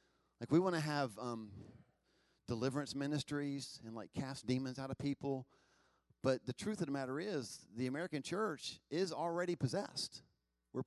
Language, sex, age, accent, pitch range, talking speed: English, male, 40-59, American, 125-170 Hz, 160 wpm